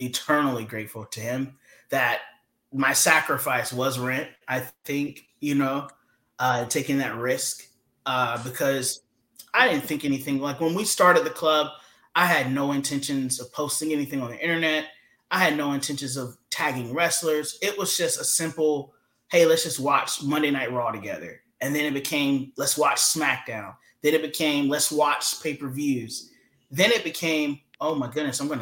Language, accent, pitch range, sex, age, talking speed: English, American, 125-150 Hz, male, 30-49, 170 wpm